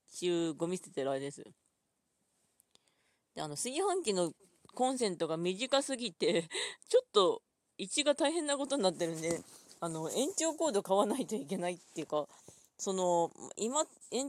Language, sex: Japanese, female